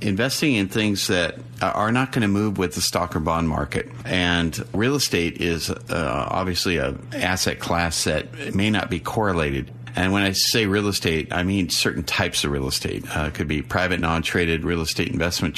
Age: 50-69